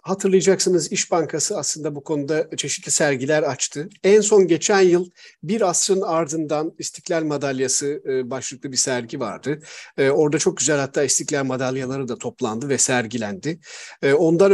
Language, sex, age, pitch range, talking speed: Turkish, male, 50-69, 145-195 Hz, 135 wpm